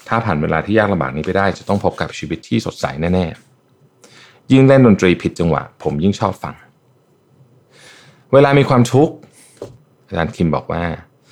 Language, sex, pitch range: Thai, male, 85-115 Hz